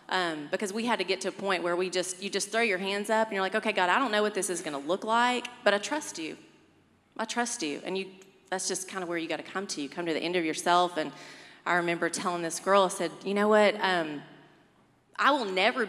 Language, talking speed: English, 270 wpm